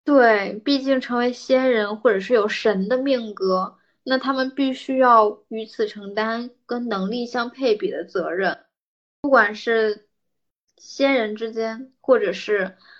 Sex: female